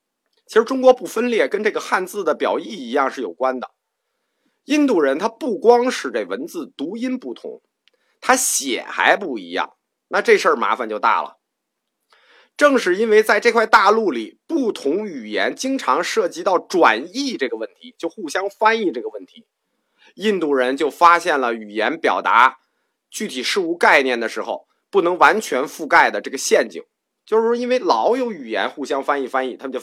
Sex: male